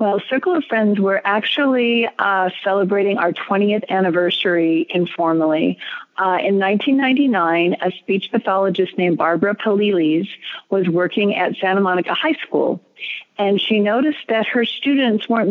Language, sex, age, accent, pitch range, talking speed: English, female, 40-59, American, 180-215 Hz, 135 wpm